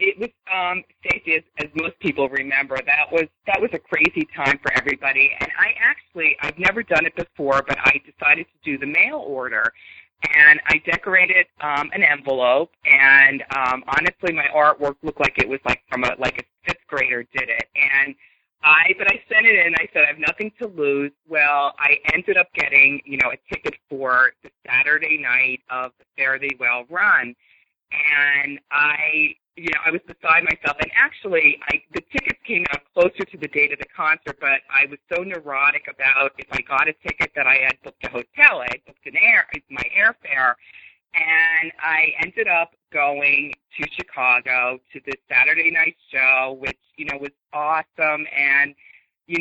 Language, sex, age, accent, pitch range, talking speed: English, female, 30-49, American, 140-165 Hz, 185 wpm